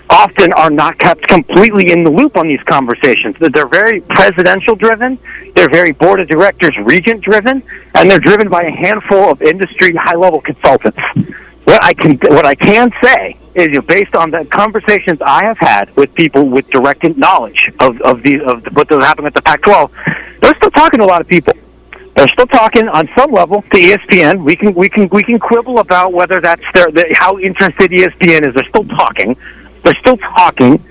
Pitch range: 155-215 Hz